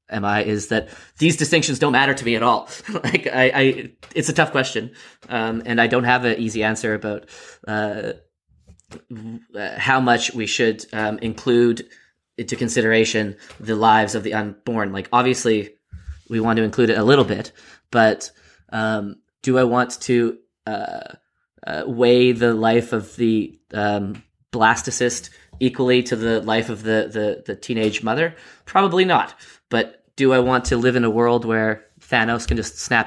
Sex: male